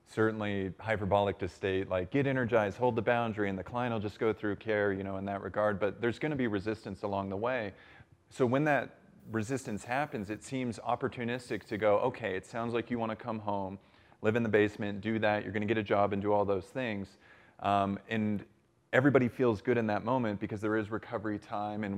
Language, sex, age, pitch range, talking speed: English, male, 30-49, 100-115 Hz, 215 wpm